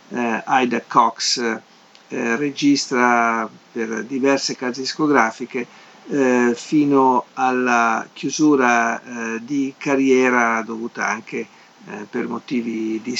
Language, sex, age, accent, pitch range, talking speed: Italian, male, 50-69, native, 125-145 Hz, 100 wpm